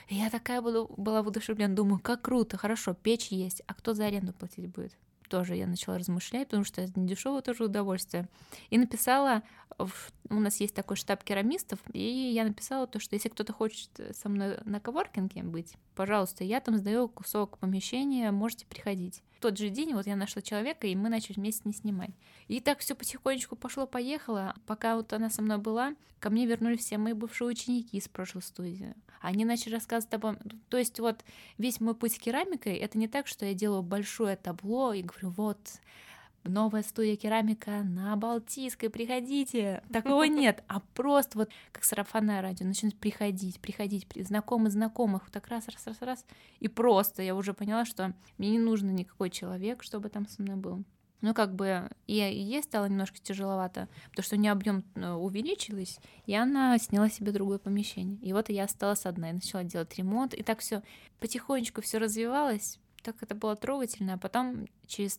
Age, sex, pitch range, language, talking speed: 20-39, female, 200-230 Hz, Russian, 180 wpm